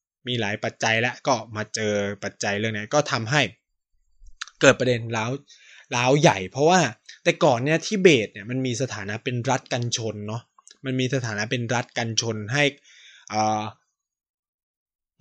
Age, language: 20-39, Thai